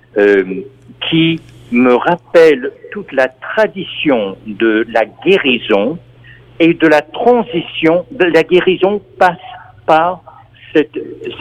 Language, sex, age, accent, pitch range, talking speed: French, male, 60-79, French, 125-180 Hz, 105 wpm